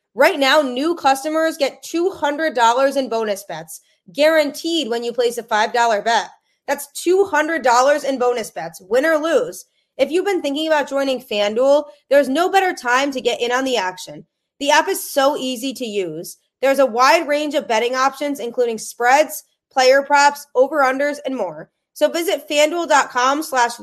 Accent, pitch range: American, 220-290 Hz